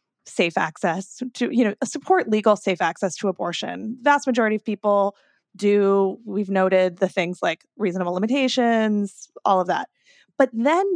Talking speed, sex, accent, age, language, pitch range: 155 wpm, female, American, 20-39, English, 195-250 Hz